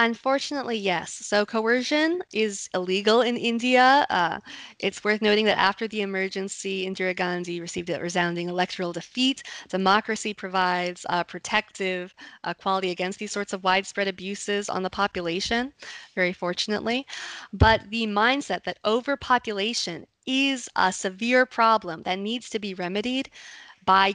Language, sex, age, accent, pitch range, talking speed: English, female, 20-39, American, 185-225 Hz, 135 wpm